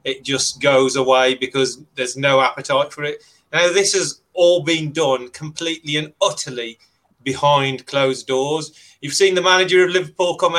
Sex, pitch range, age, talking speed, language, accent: male, 135-180 Hz, 30-49, 165 wpm, English, British